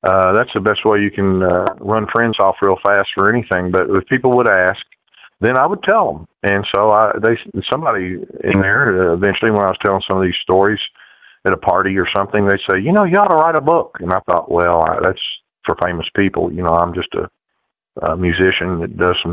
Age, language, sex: 40-59, English, male